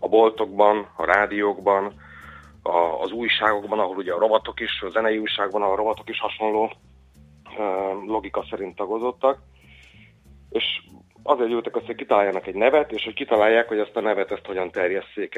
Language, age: Hungarian, 30-49